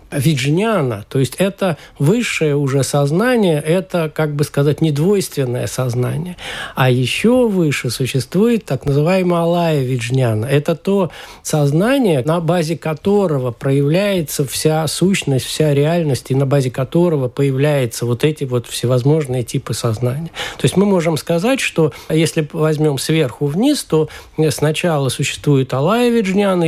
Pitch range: 135-175 Hz